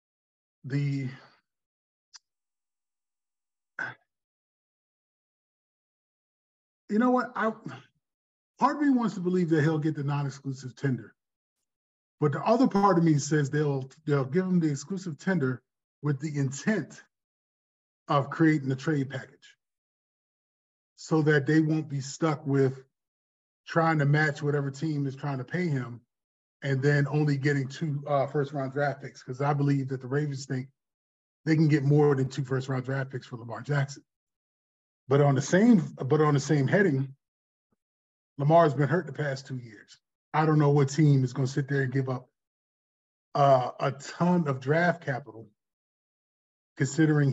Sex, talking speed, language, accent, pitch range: male, 155 wpm, English, American, 130-155 Hz